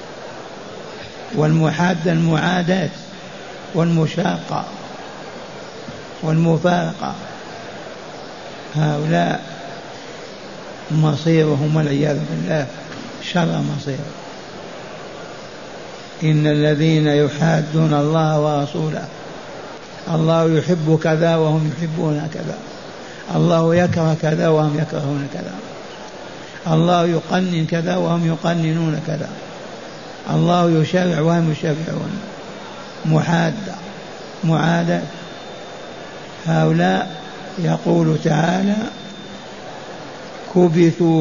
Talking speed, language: 65 wpm, Arabic